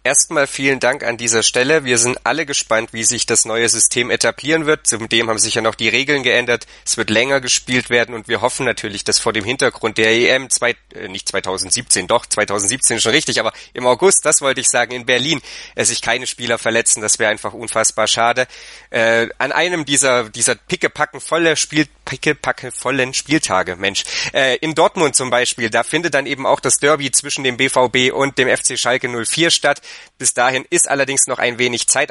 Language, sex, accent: German, male, German